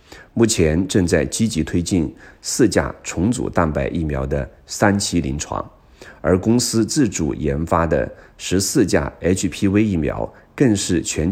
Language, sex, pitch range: Chinese, male, 70-95 Hz